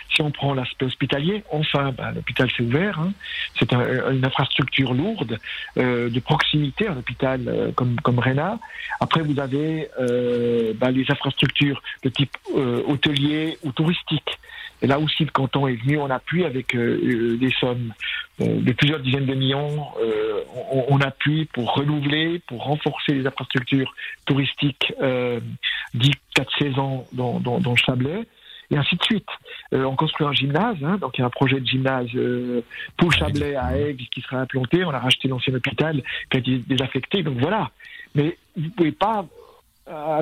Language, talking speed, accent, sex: French, 175 wpm, French, male